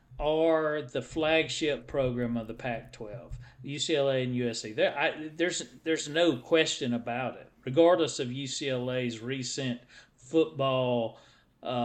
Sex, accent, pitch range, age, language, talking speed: male, American, 120-155 Hz, 40-59, English, 115 wpm